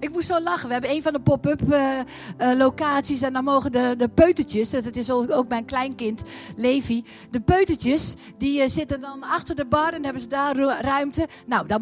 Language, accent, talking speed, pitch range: Dutch, Dutch, 215 wpm, 235-305 Hz